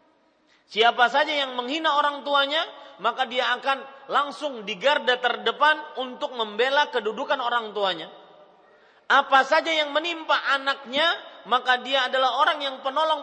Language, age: English, 40-59